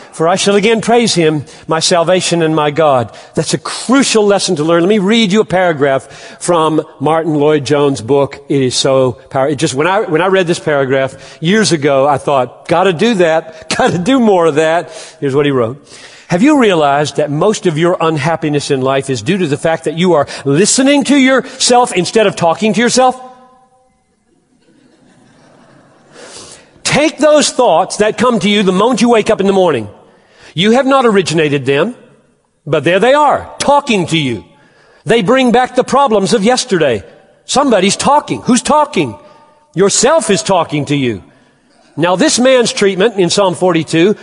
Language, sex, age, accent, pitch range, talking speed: English, male, 40-59, American, 160-245 Hz, 180 wpm